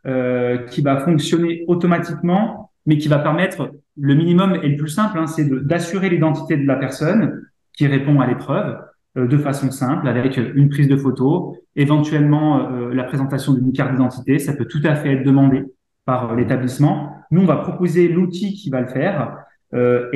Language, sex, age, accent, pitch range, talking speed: French, male, 20-39, French, 135-170 Hz, 185 wpm